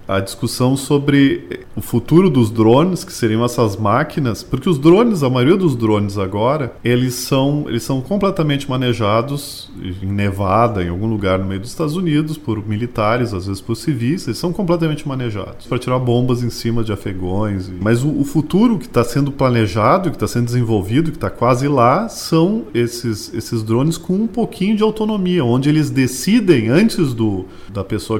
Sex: male